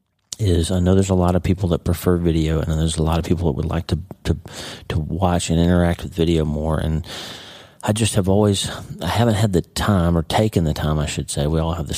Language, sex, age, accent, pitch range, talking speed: English, male, 40-59, American, 80-95 Hz, 250 wpm